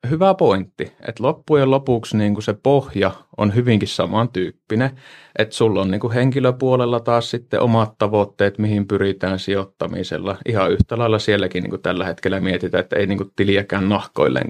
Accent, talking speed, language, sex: native, 130 wpm, Finnish, male